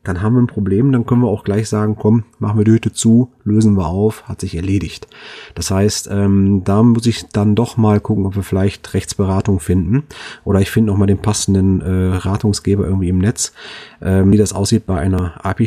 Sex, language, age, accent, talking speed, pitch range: male, German, 30-49, German, 220 wpm, 100-120 Hz